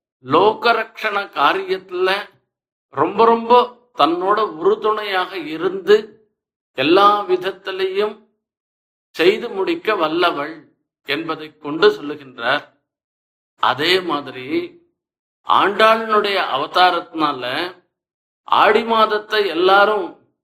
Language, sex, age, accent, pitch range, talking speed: Tamil, male, 50-69, native, 150-210 Hz, 65 wpm